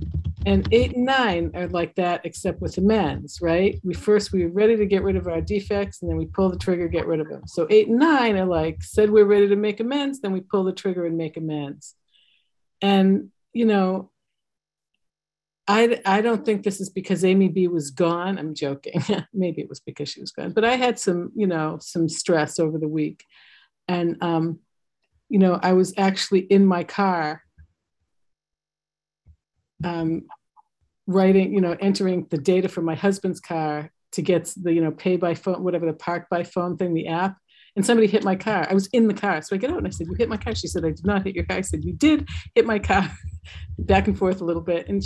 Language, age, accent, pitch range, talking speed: English, 50-69, American, 155-195 Hz, 220 wpm